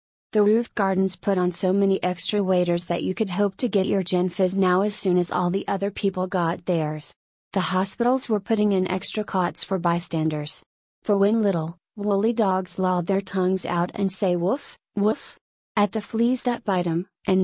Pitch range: 180-200 Hz